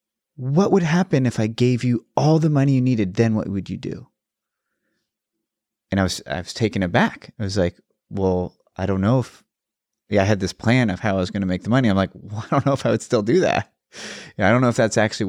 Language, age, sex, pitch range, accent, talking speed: English, 30-49, male, 100-125 Hz, American, 255 wpm